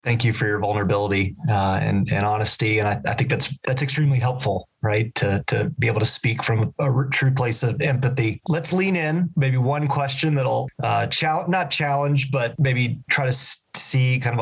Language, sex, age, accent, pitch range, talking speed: English, male, 30-49, American, 115-135 Hz, 200 wpm